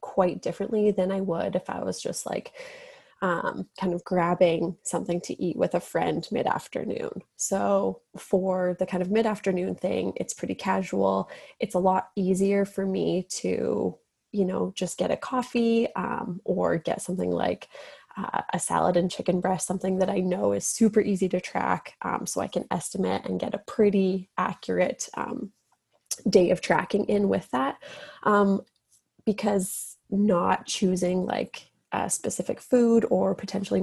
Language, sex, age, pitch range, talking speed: English, female, 20-39, 180-210 Hz, 165 wpm